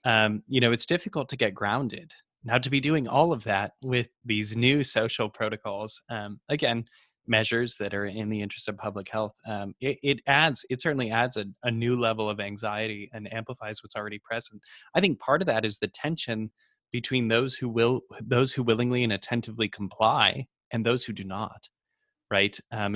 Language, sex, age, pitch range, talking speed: English, male, 20-39, 100-115 Hz, 195 wpm